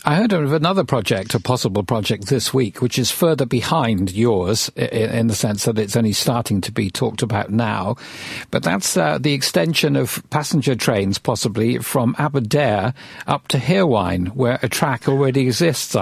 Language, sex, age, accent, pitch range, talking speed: English, male, 50-69, British, 105-130 Hz, 170 wpm